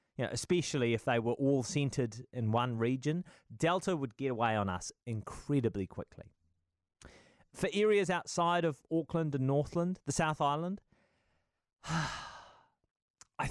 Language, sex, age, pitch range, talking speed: English, male, 30-49, 120-175 Hz, 125 wpm